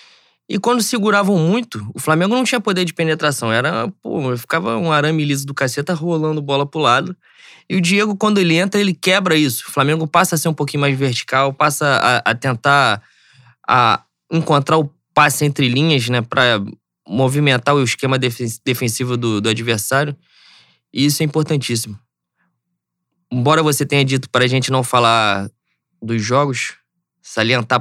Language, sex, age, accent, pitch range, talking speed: Portuguese, male, 20-39, Brazilian, 120-170 Hz, 160 wpm